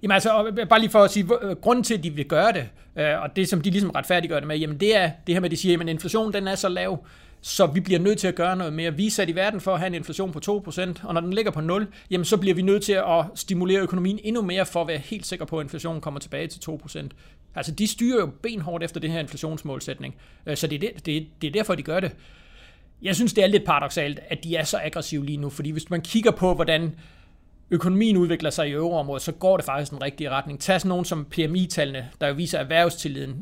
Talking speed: 265 wpm